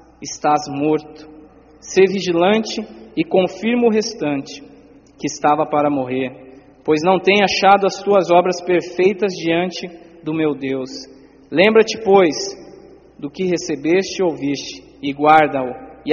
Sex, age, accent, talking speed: male, 20-39, Brazilian, 125 wpm